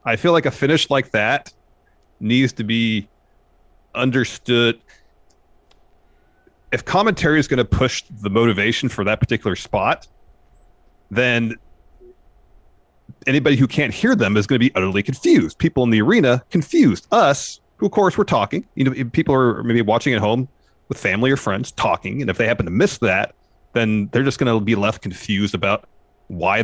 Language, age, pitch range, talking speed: English, 30-49, 100-140 Hz, 175 wpm